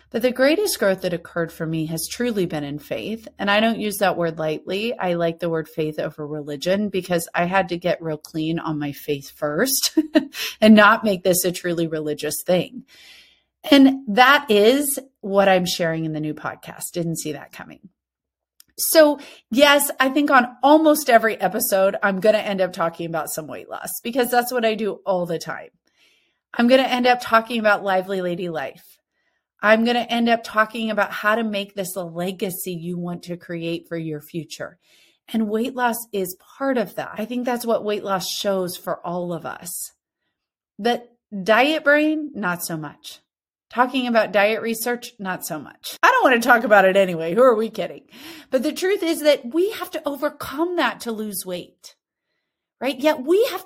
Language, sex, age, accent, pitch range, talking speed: English, female, 30-49, American, 175-260 Hz, 195 wpm